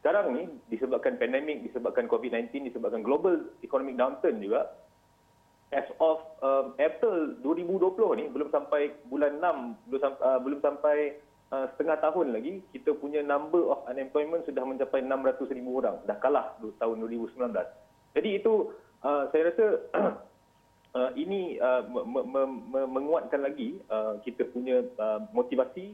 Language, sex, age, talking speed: Malay, male, 30-49, 140 wpm